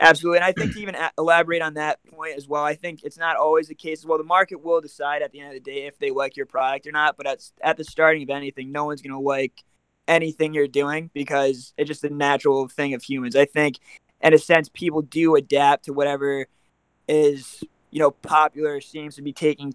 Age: 20-39